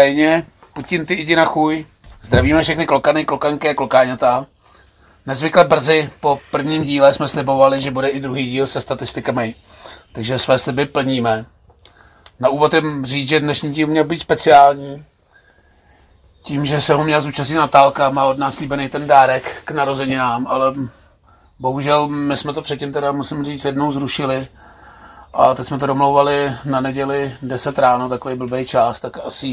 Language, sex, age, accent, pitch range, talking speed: Czech, male, 30-49, native, 125-145 Hz, 160 wpm